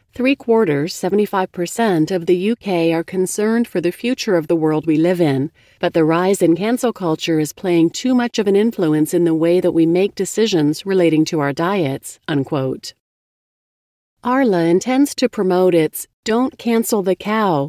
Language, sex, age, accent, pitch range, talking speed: English, female, 40-59, American, 165-215 Hz, 170 wpm